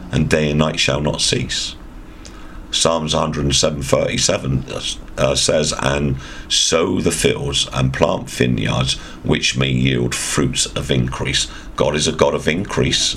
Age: 50-69